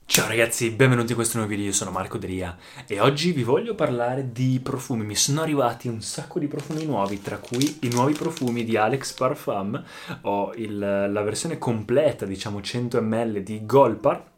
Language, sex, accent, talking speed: Italian, male, native, 175 wpm